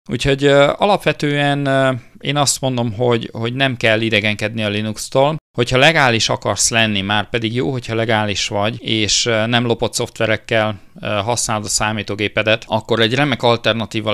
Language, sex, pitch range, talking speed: Hungarian, male, 105-120 Hz, 150 wpm